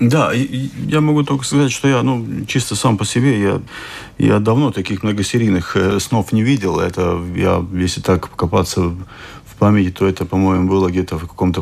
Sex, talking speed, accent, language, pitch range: male, 175 wpm, native, Ukrainian, 95-115 Hz